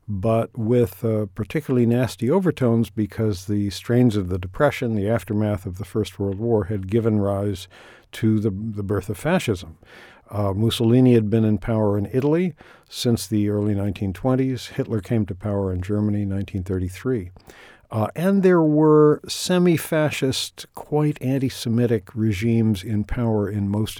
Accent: American